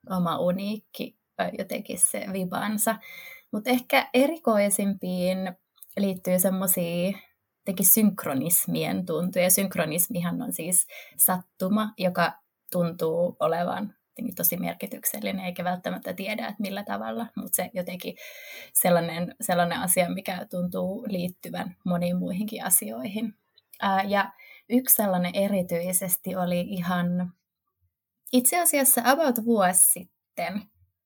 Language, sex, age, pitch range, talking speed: Finnish, female, 20-39, 175-210 Hz, 100 wpm